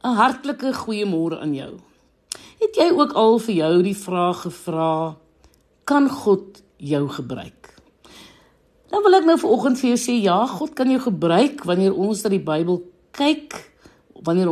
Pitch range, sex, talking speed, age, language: 175-270 Hz, female, 160 wpm, 60-79, English